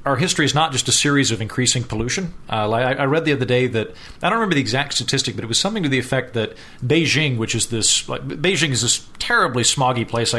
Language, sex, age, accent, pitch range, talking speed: English, male, 40-59, American, 110-140 Hz, 235 wpm